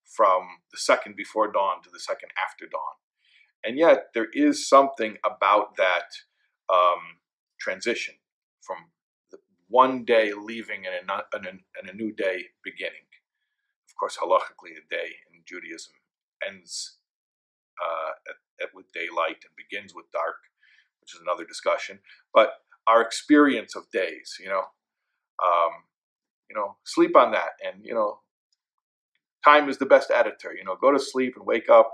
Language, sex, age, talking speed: English, male, 50-69, 150 wpm